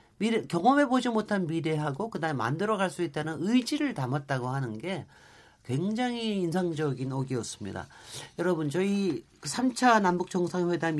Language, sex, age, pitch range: Korean, male, 40-59, 130-180 Hz